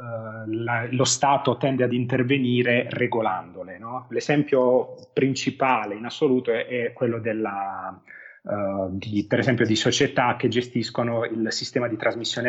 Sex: male